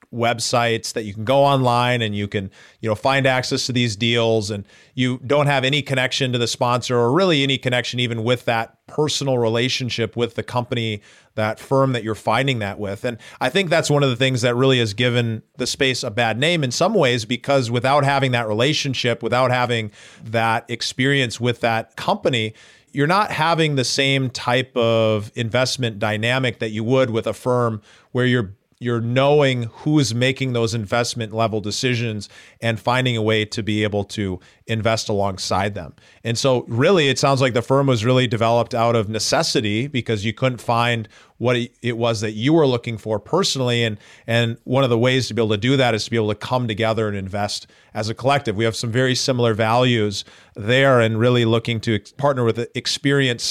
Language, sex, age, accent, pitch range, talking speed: English, male, 40-59, American, 115-130 Hz, 200 wpm